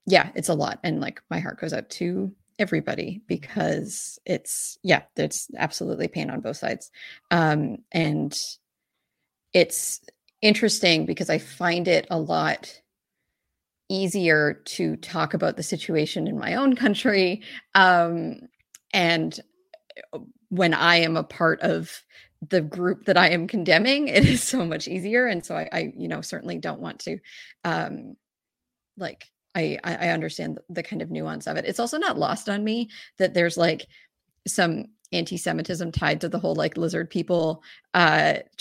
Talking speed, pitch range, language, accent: 155 wpm, 170-220 Hz, English, American